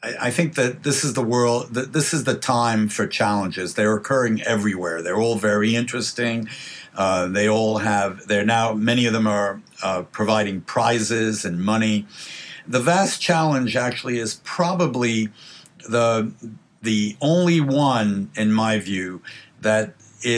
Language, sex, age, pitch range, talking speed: English, male, 60-79, 110-135 Hz, 145 wpm